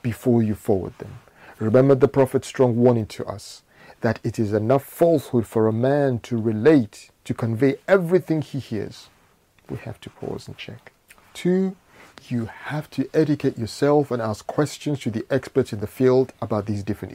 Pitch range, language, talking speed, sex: 110-145 Hz, English, 175 wpm, male